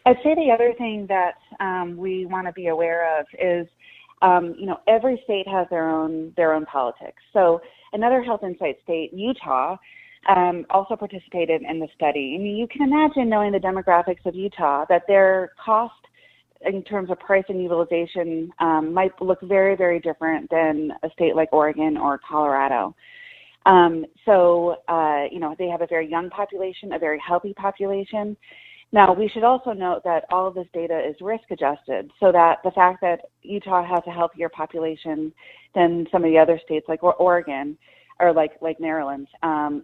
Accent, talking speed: American, 180 wpm